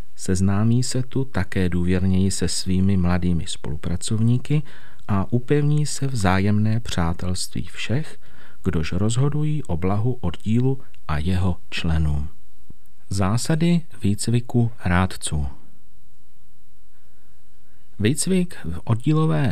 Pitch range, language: 90-120 Hz, Czech